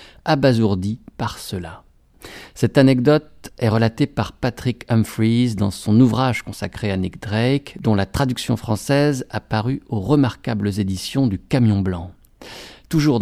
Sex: male